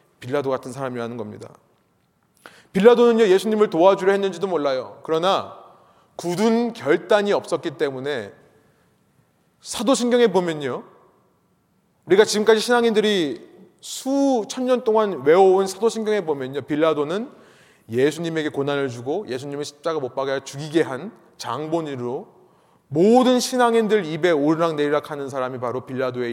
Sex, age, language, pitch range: male, 30-49, Korean, 150-245 Hz